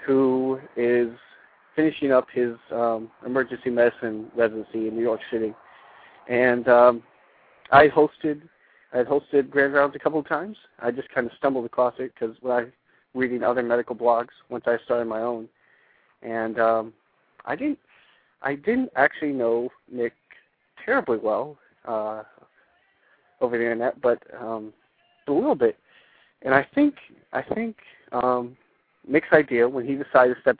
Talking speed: 155 wpm